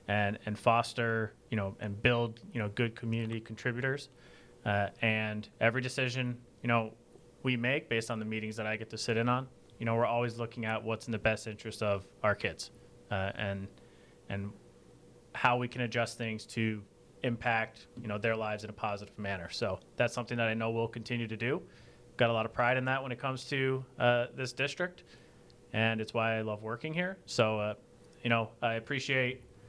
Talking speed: 200 wpm